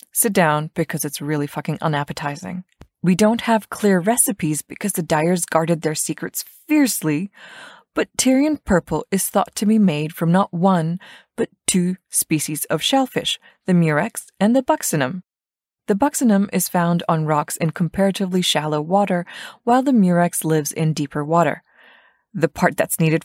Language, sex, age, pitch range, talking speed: English, female, 20-39, 160-210 Hz, 155 wpm